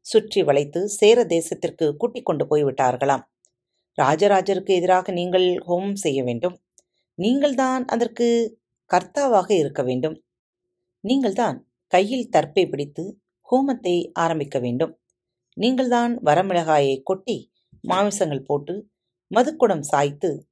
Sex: female